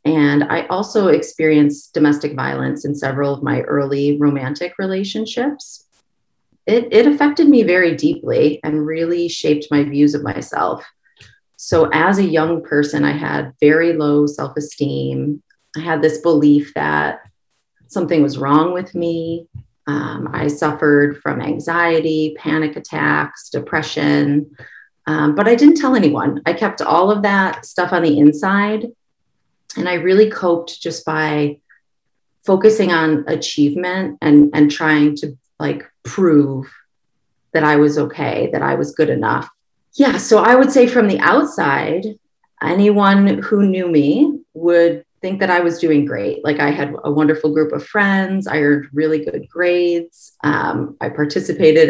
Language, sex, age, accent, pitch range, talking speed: English, female, 30-49, American, 145-180 Hz, 150 wpm